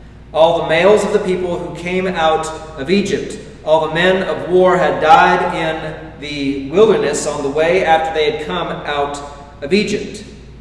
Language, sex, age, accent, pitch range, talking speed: English, male, 40-59, American, 145-175 Hz, 175 wpm